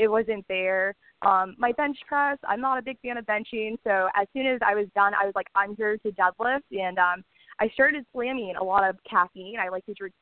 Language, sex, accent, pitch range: English, female, American, 190-245 Hz